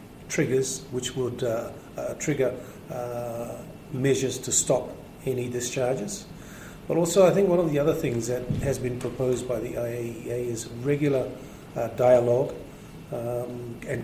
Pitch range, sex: 120-135 Hz, male